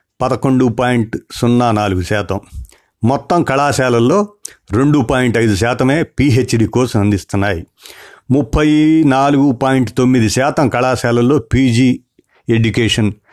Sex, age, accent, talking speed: male, 50-69, native, 100 wpm